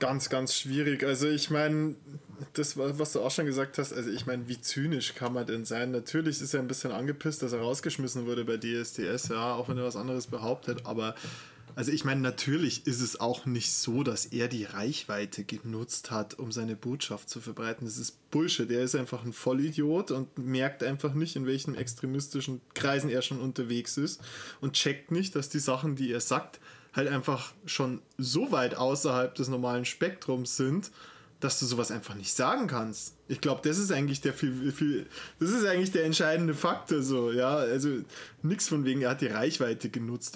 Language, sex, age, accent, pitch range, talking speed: German, male, 20-39, German, 125-150 Hz, 200 wpm